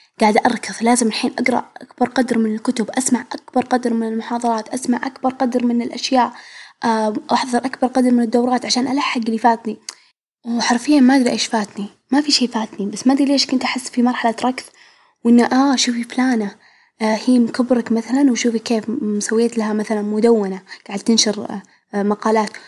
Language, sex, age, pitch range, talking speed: Arabic, female, 10-29, 220-255 Hz, 170 wpm